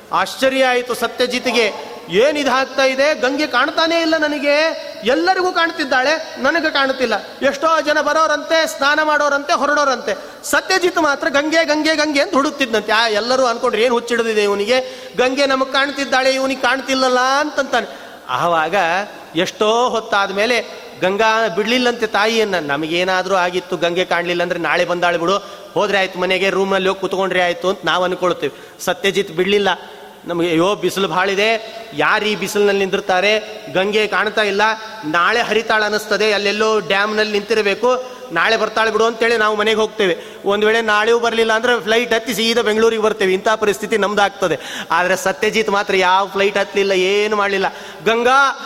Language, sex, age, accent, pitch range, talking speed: Kannada, male, 30-49, native, 200-275 Hz, 135 wpm